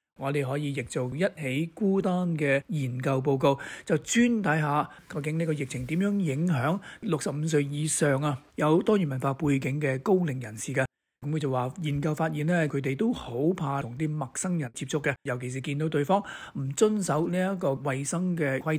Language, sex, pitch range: Chinese, male, 130-165 Hz